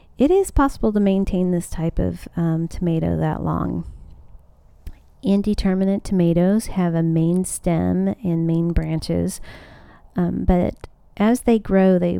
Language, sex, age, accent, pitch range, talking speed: English, female, 40-59, American, 165-195 Hz, 135 wpm